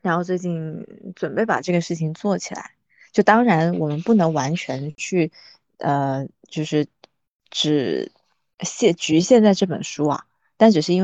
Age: 20-39